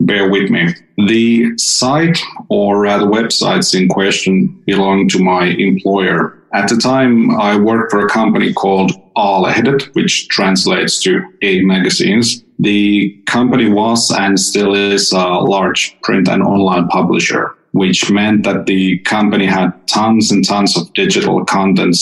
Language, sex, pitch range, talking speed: English, male, 95-110 Hz, 145 wpm